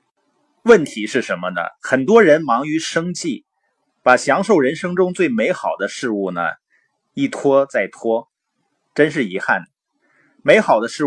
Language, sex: Chinese, male